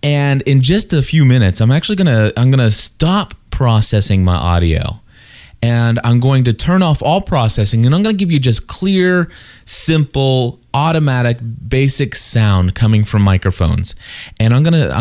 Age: 20-39